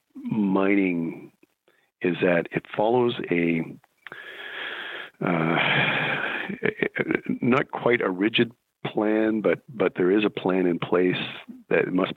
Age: 50-69